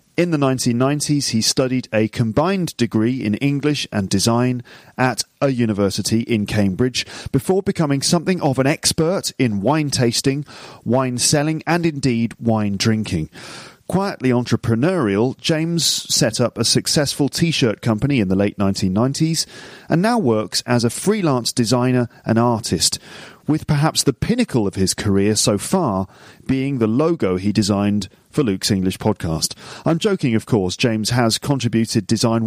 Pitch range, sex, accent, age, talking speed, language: 110-145 Hz, male, British, 40-59, 150 wpm, English